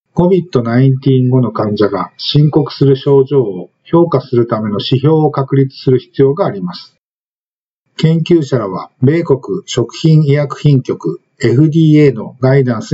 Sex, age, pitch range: male, 50-69, 130-160 Hz